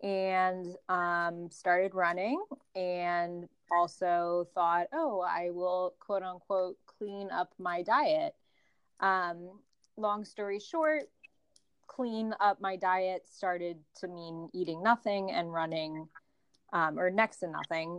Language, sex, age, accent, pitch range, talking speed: English, female, 20-39, American, 175-210 Hz, 120 wpm